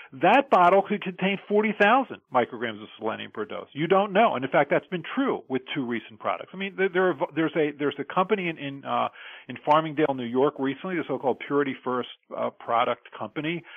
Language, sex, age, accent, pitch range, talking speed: English, male, 40-59, American, 130-185 Hz, 210 wpm